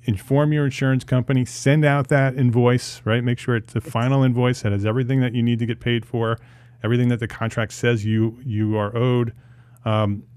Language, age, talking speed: English, 30-49, 205 wpm